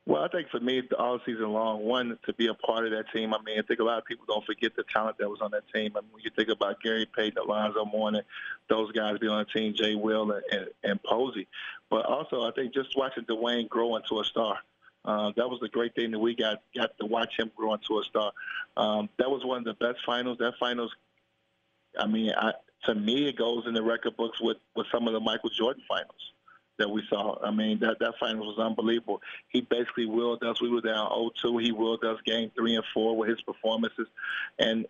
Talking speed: 240 wpm